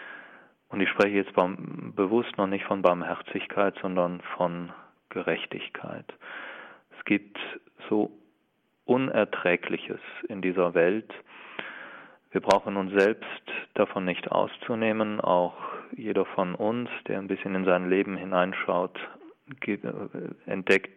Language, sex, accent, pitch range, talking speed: German, male, German, 90-100 Hz, 110 wpm